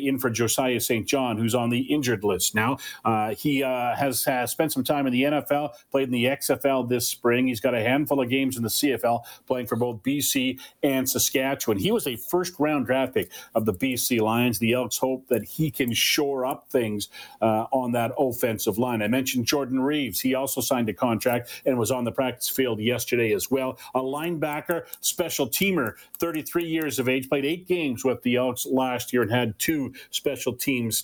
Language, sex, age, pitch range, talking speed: English, male, 40-59, 125-150 Hz, 205 wpm